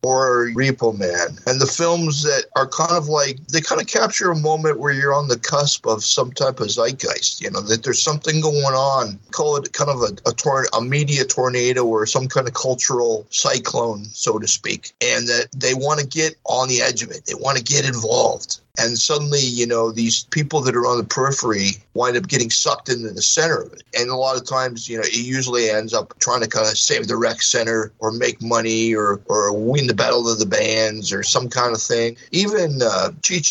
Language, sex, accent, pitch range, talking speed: English, male, American, 115-155 Hz, 225 wpm